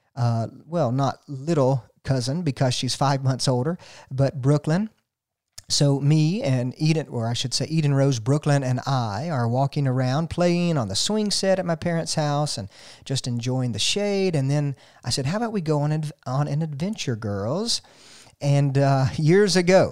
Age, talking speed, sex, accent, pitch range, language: 40-59, 175 wpm, male, American, 125-160 Hz, English